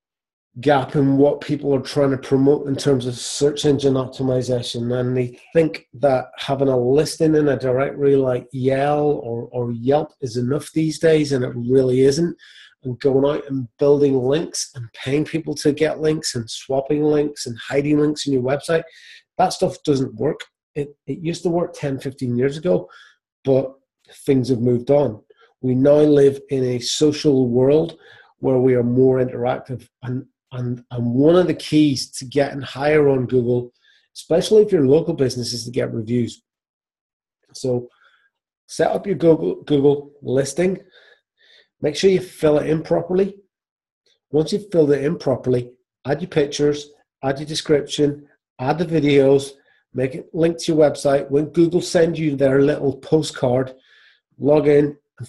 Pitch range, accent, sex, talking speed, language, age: 130-150 Hz, British, male, 165 wpm, English, 30-49